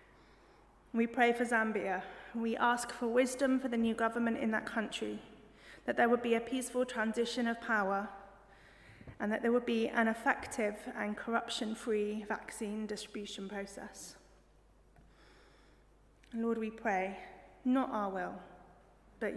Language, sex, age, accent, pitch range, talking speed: English, female, 30-49, British, 210-245 Hz, 135 wpm